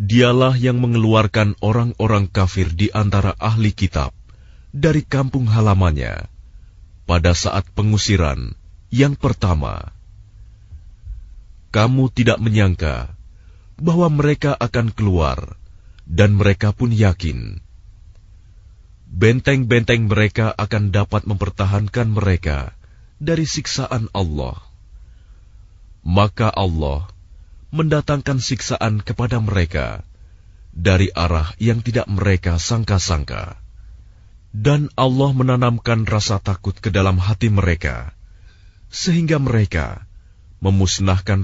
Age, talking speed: 30-49, 90 wpm